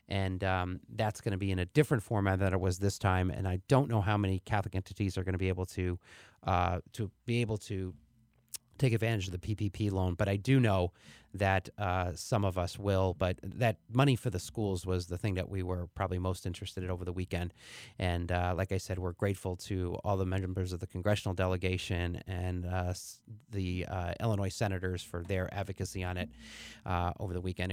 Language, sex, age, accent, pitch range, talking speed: English, male, 30-49, American, 90-110 Hz, 215 wpm